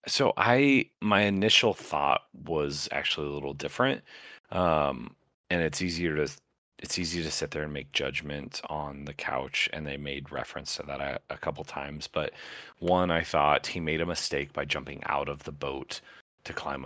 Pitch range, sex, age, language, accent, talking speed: 70-110 Hz, male, 30-49, English, American, 185 wpm